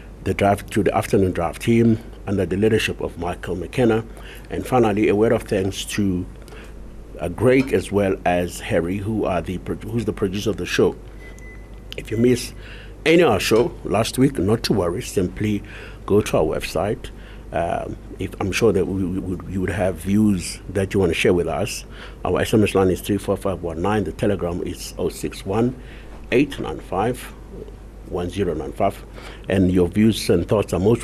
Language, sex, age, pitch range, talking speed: English, male, 60-79, 95-110 Hz, 175 wpm